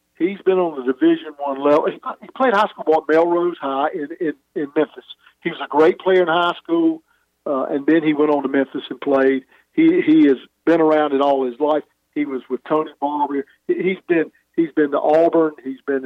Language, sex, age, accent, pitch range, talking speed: English, male, 50-69, American, 140-185 Hz, 220 wpm